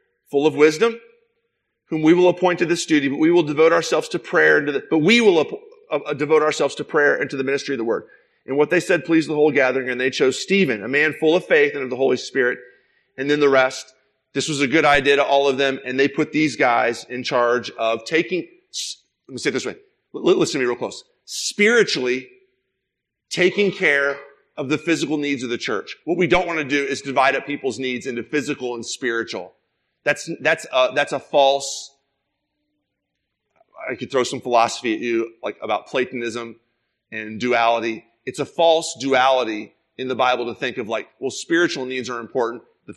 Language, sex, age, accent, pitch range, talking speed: English, male, 40-59, American, 120-165 Hz, 210 wpm